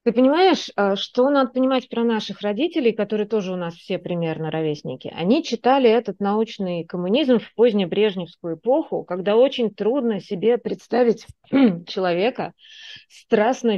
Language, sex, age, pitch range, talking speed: Russian, female, 30-49, 180-235 Hz, 135 wpm